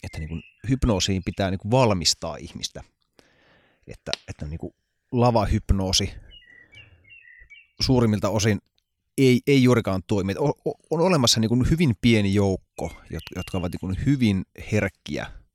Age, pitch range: 30-49, 90-115 Hz